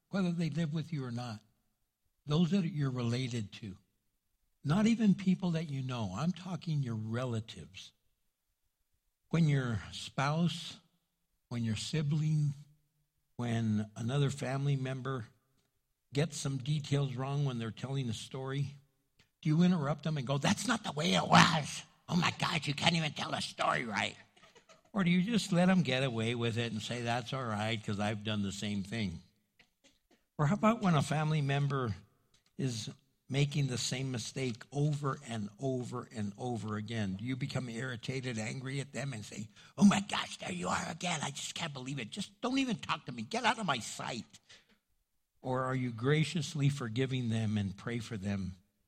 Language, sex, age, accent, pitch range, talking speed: English, male, 60-79, American, 110-150 Hz, 175 wpm